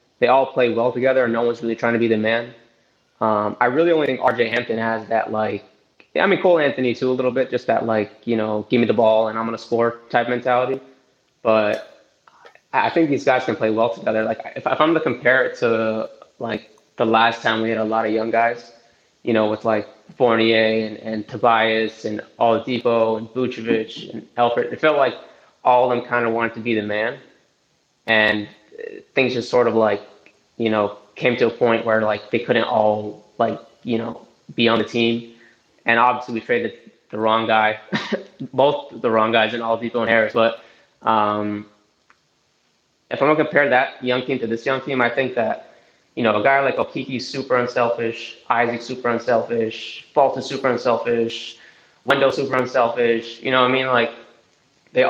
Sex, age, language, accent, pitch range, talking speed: male, 20-39, English, American, 110-125 Hz, 200 wpm